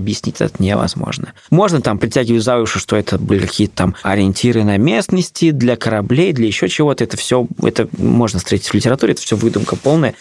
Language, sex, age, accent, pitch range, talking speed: Russian, male, 20-39, native, 100-120 Hz, 190 wpm